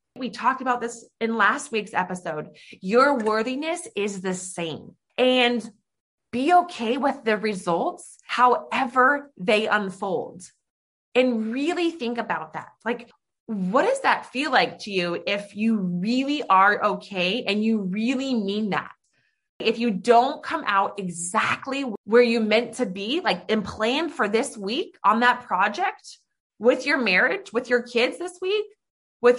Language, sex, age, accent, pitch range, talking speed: English, female, 20-39, American, 200-260 Hz, 150 wpm